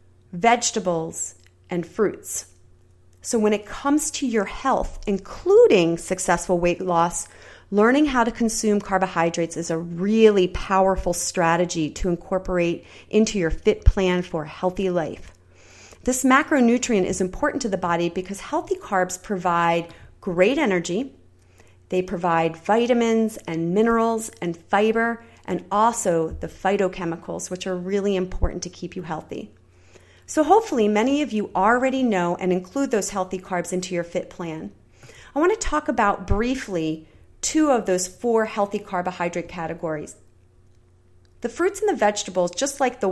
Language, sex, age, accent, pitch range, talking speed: English, female, 30-49, American, 170-215 Hz, 140 wpm